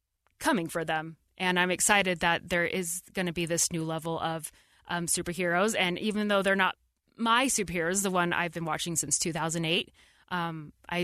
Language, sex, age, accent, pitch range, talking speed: English, female, 20-39, American, 165-195 Hz, 175 wpm